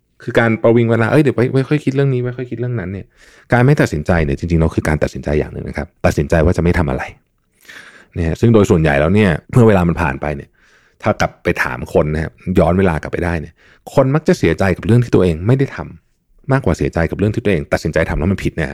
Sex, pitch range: male, 85-120 Hz